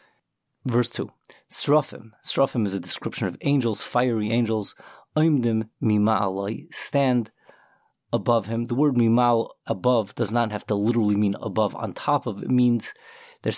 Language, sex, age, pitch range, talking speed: English, male, 30-49, 110-130 Hz, 140 wpm